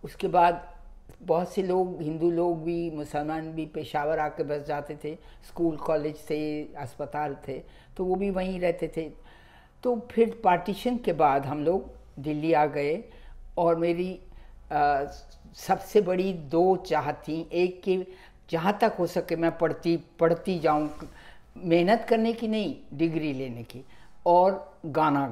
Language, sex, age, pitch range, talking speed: Hindi, female, 60-79, 155-190 Hz, 145 wpm